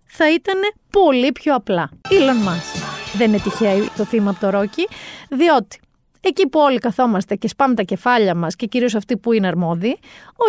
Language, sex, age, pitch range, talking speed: Greek, female, 30-49, 210-300 Hz, 175 wpm